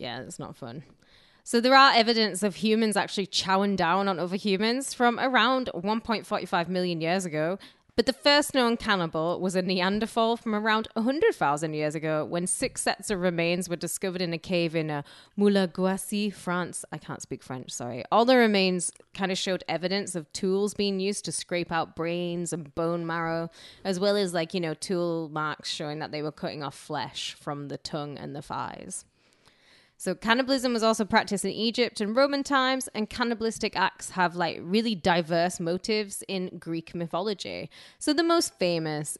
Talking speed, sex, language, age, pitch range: 180 wpm, female, English, 10-29, 160-215 Hz